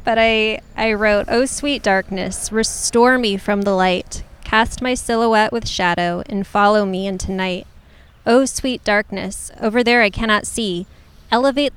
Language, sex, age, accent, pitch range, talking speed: English, female, 20-39, American, 190-225 Hz, 170 wpm